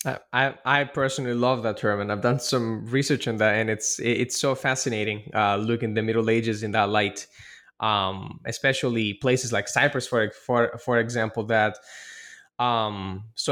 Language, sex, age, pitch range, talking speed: English, male, 10-29, 110-130 Hz, 175 wpm